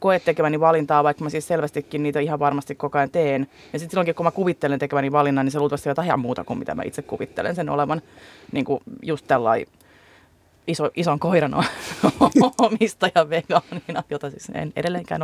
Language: Finnish